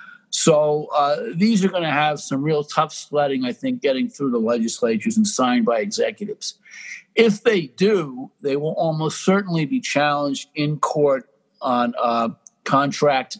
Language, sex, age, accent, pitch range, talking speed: English, male, 60-79, American, 145-215 Hz, 155 wpm